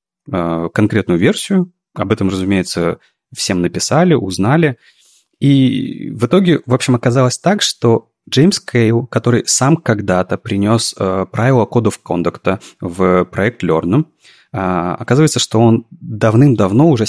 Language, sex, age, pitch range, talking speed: Russian, male, 30-49, 95-125 Hz, 125 wpm